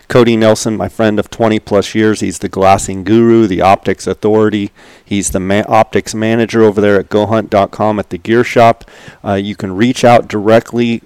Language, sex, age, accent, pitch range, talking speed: English, male, 40-59, American, 100-115 Hz, 180 wpm